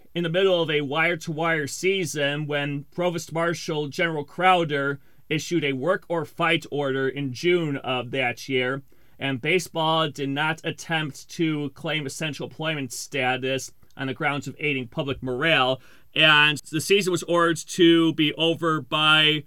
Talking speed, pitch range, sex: 150 wpm, 135-160 Hz, male